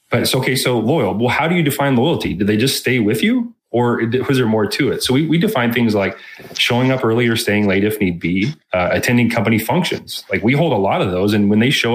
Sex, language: male, English